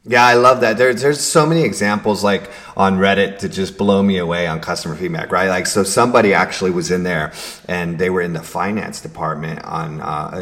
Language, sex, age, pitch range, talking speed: English, male, 30-49, 85-105 Hz, 215 wpm